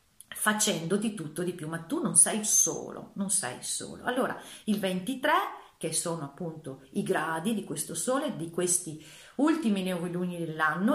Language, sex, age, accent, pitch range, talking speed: Italian, female, 40-59, native, 160-205 Hz, 155 wpm